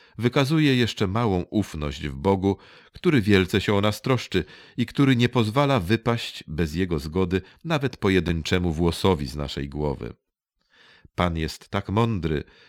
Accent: native